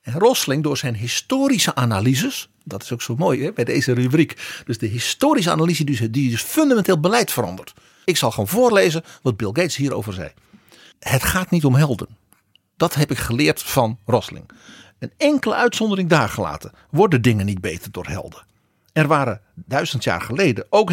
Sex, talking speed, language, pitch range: male, 175 wpm, Dutch, 115-175 Hz